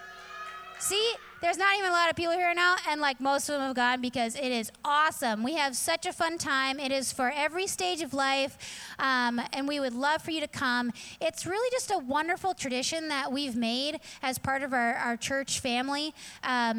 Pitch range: 245-305 Hz